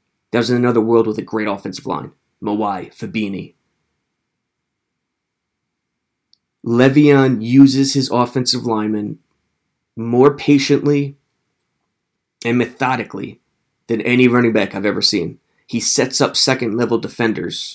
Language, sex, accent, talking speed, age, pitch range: English, male, American, 115 wpm, 30-49, 110-130 Hz